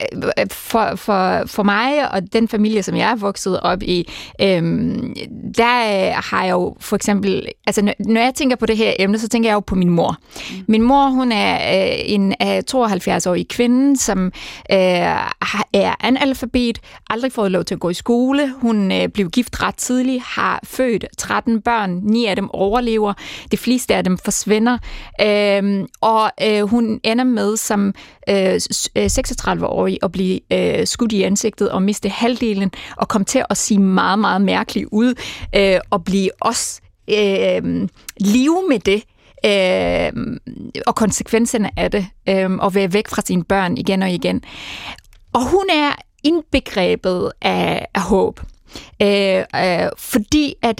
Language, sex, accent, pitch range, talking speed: Danish, female, native, 195-240 Hz, 150 wpm